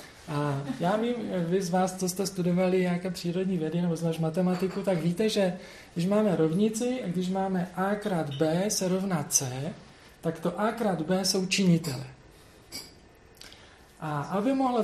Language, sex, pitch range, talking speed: Czech, male, 160-190 Hz, 160 wpm